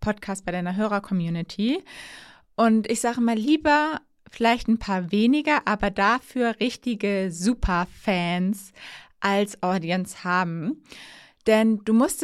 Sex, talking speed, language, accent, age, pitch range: female, 115 wpm, German, German, 20-39, 200-255 Hz